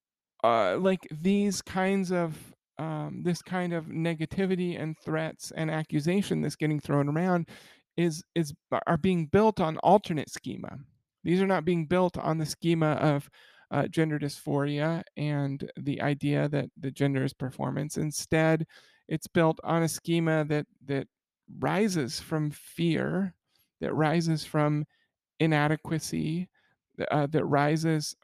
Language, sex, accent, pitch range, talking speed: English, male, American, 150-180 Hz, 135 wpm